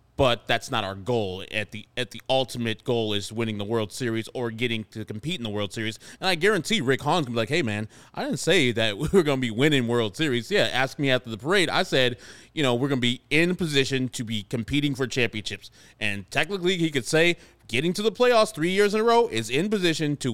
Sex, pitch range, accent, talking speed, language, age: male, 115-145 Hz, American, 255 wpm, English, 30-49